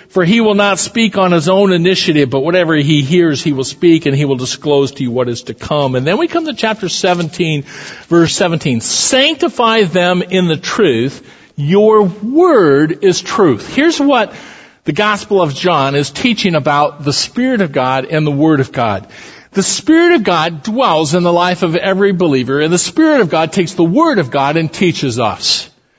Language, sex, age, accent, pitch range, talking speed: English, male, 50-69, American, 150-205 Hz, 200 wpm